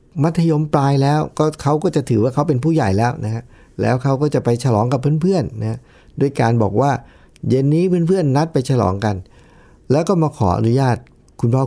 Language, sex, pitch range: Thai, male, 105-140 Hz